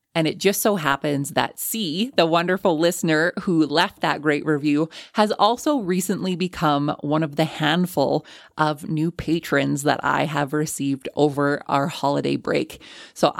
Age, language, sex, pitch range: 20-39, English, female, 145-170 Hz